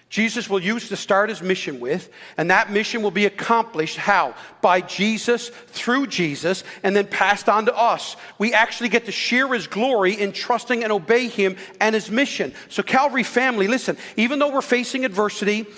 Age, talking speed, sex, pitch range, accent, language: 40-59, 185 wpm, male, 190-235 Hz, American, English